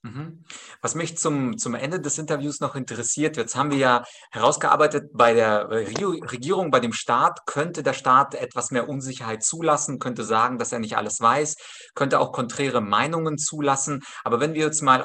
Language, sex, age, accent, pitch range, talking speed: German, male, 30-49, German, 115-155 Hz, 175 wpm